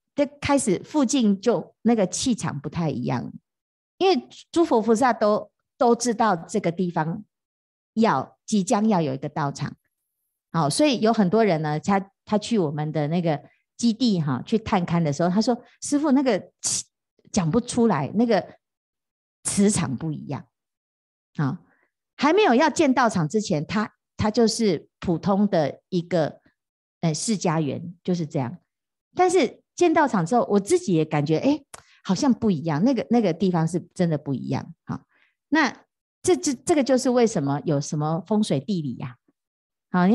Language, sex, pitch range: Chinese, female, 165-235 Hz